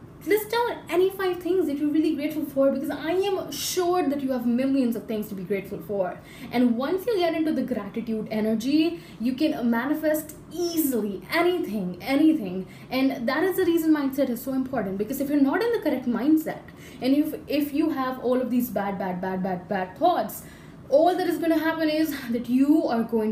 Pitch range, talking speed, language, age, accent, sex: 210-300 Hz, 205 wpm, Hindi, 10-29, native, female